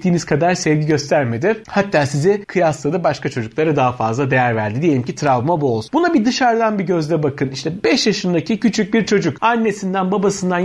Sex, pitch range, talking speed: male, 140-210 Hz, 180 wpm